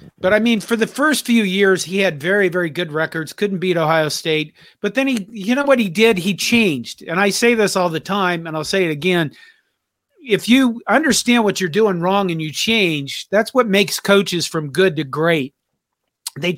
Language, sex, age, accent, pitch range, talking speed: English, male, 40-59, American, 165-215 Hz, 215 wpm